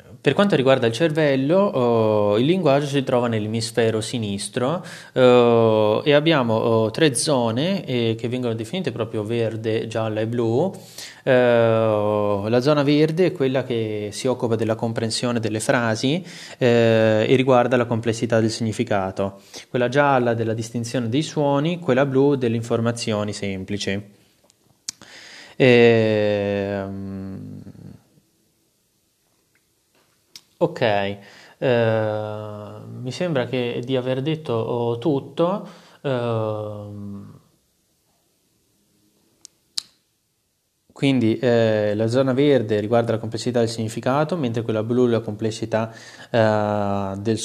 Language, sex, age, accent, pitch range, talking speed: Italian, male, 20-39, native, 105-125 Hz, 105 wpm